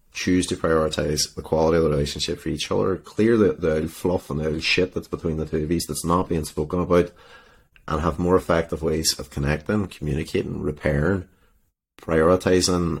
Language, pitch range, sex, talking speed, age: English, 75-90 Hz, male, 180 wpm, 30-49